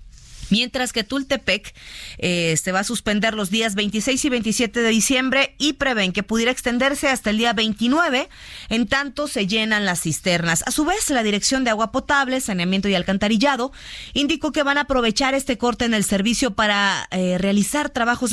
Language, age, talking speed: Spanish, 30-49, 180 wpm